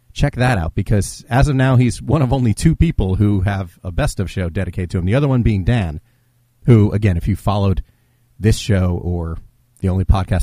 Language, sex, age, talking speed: English, male, 40-59, 220 wpm